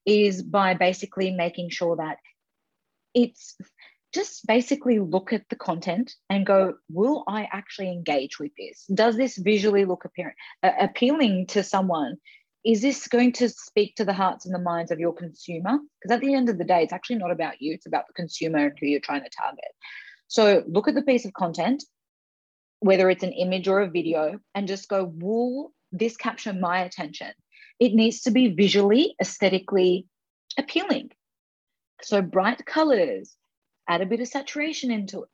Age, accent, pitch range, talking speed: 30-49, Australian, 180-245 Hz, 175 wpm